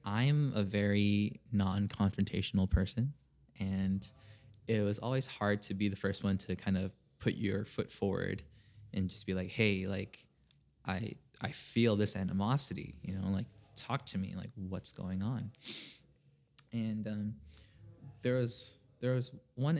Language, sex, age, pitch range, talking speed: English, male, 20-39, 95-110 Hz, 150 wpm